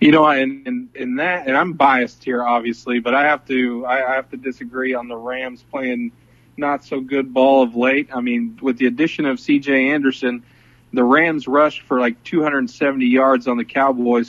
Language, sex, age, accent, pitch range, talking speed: English, male, 40-59, American, 125-145 Hz, 195 wpm